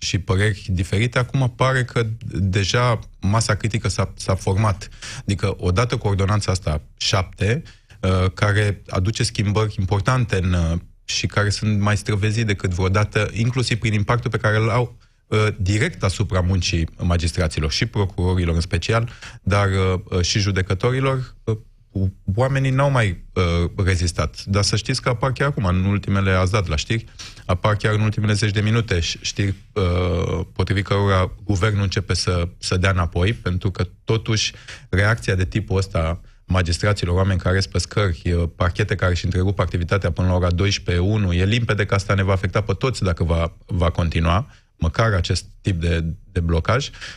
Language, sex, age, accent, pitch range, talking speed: Romanian, male, 20-39, native, 95-110 Hz, 155 wpm